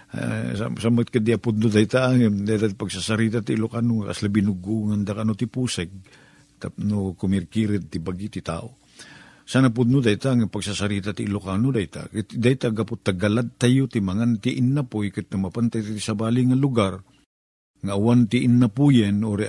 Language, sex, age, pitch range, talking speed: Filipino, male, 50-69, 105-120 Hz, 165 wpm